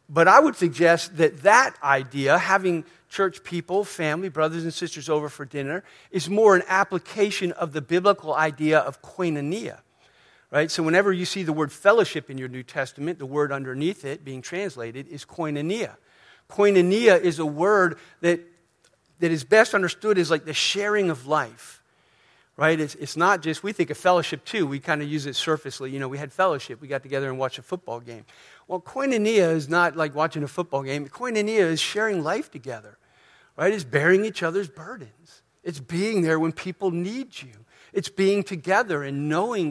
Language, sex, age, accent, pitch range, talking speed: English, male, 50-69, American, 150-190 Hz, 185 wpm